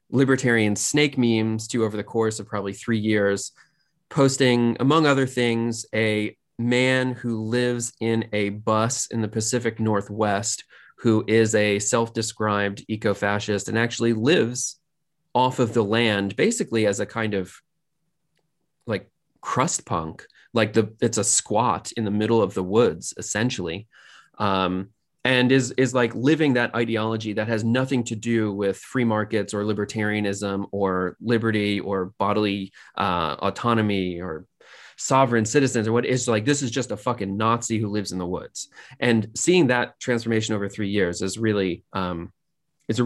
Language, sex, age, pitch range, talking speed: English, male, 20-39, 100-120 Hz, 155 wpm